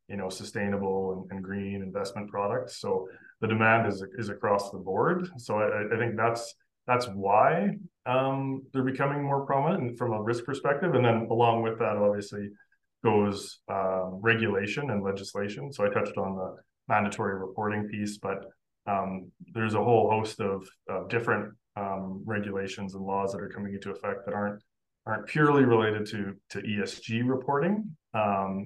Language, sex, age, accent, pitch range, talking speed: English, male, 20-39, Canadian, 95-115 Hz, 165 wpm